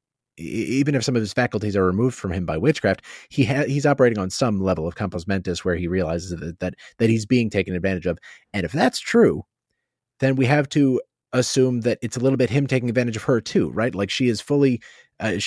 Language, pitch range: English, 95-120 Hz